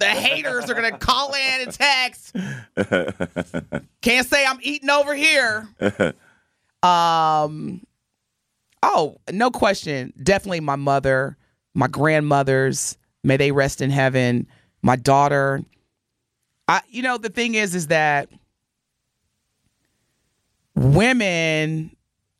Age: 30-49